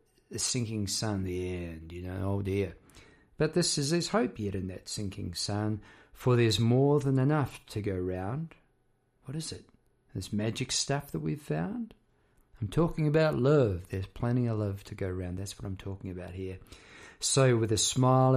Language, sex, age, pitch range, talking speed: English, male, 50-69, 105-140 Hz, 185 wpm